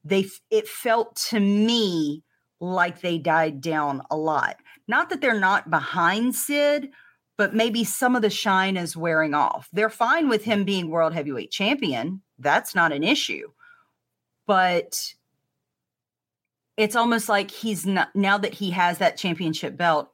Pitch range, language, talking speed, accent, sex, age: 165-215 Hz, English, 150 wpm, American, female, 40-59